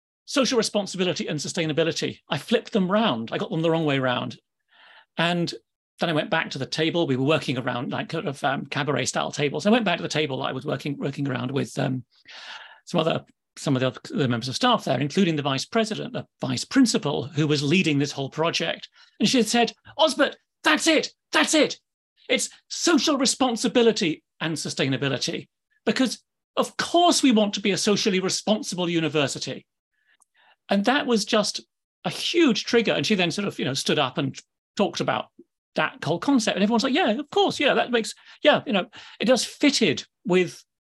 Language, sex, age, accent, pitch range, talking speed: English, male, 40-59, British, 150-230 Hz, 195 wpm